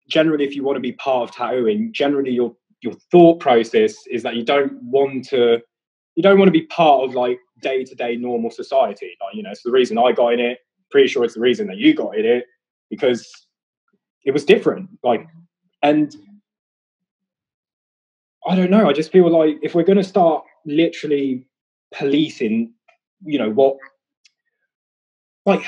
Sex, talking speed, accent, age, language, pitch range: male, 175 wpm, British, 20-39, English, 130-205 Hz